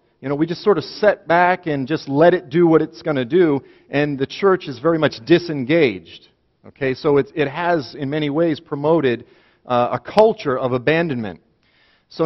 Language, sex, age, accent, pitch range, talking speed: English, male, 40-59, American, 130-165 Hz, 195 wpm